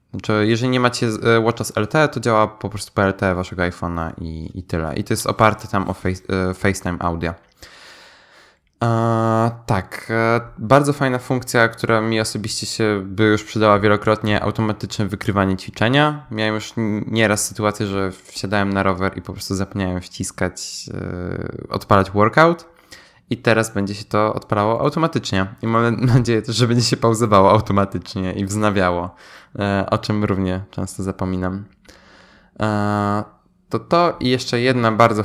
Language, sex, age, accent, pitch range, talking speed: Polish, male, 20-39, native, 95-120 Hz, 150 wpm